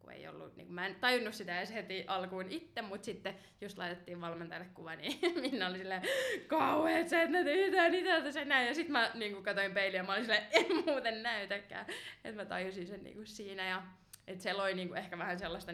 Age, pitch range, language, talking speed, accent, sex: 20-39, 175-220 Hz, Finnish, 235 wpm, native, female